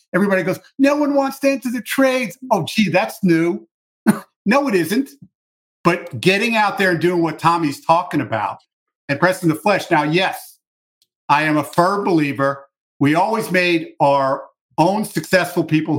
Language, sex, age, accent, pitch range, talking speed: English, male, 50-69, American, 140-175 Hz, 165 wpm